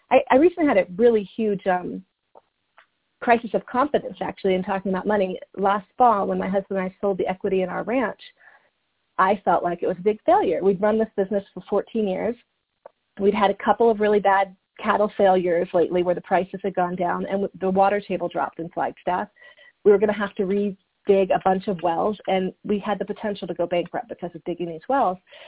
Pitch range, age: 185-230 Hz, 30-49